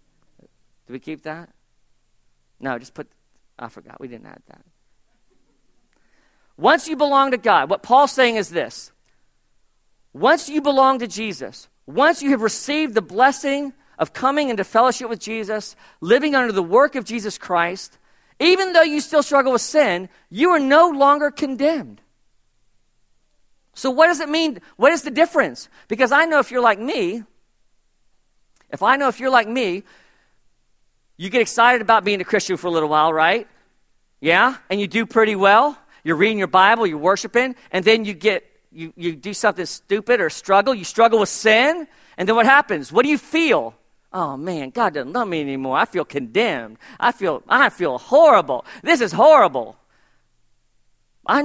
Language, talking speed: English, 175 wpm